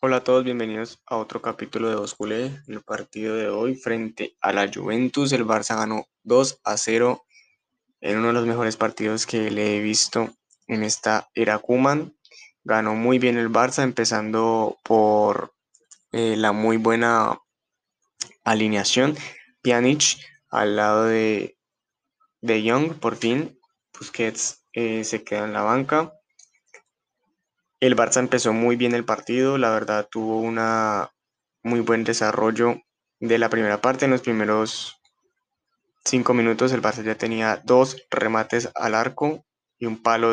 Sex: male